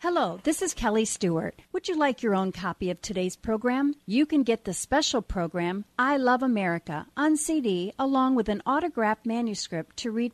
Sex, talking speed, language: female, 185 wpm, English